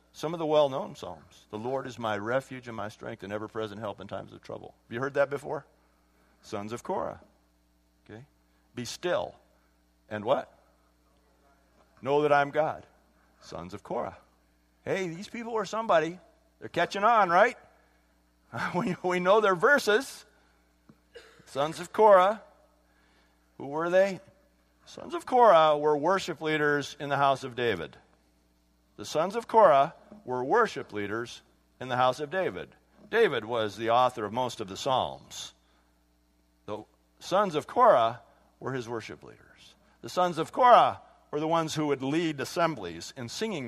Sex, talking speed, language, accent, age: male, 155 wpm, English, American, 50-69